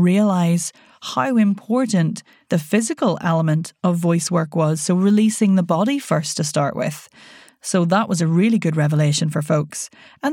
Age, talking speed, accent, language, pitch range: 30-49, 165 wpm, Irish, English, 165-205 Hz